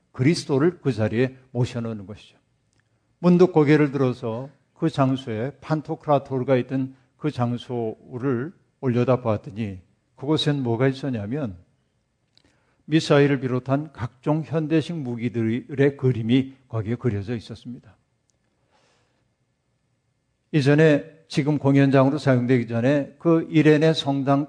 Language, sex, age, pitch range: Korean, male, 50-69, 120-150 Hz